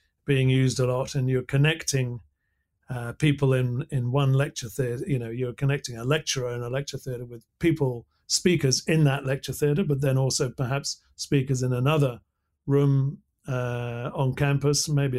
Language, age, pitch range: English, 50-69, 120-140 Hz